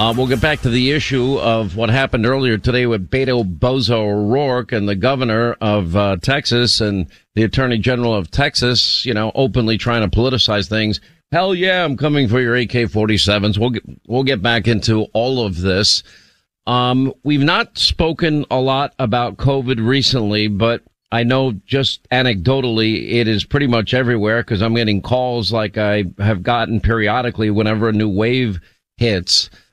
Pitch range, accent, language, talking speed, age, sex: 110-130 Hz, American, English, 170 wpm, 50-69, male